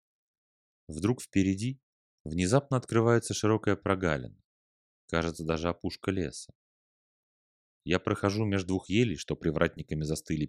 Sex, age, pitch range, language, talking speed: male, 30-49, 80-110 Hz, Russian, 105 wpm